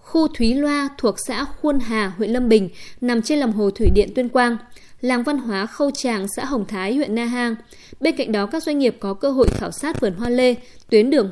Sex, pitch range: female, 210-265 Hz